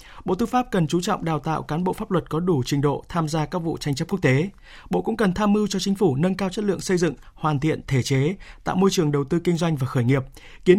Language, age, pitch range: Vietnamese, 20-39, 135-185 Hz